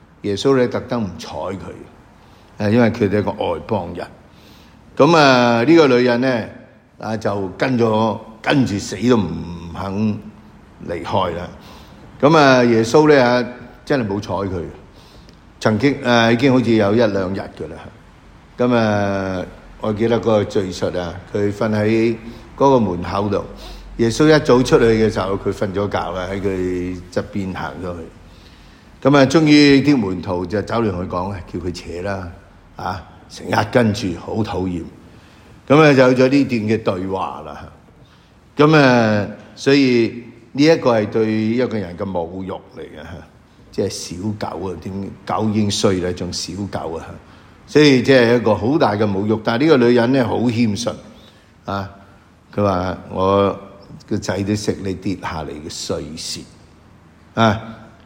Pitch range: 95-120 Hz